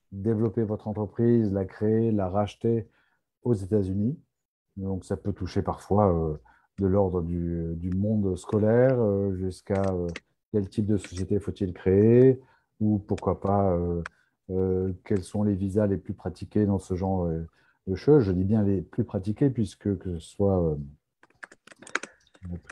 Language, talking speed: French, 155 wpm